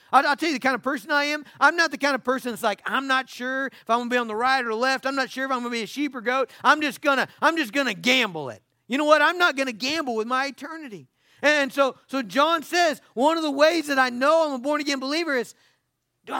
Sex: male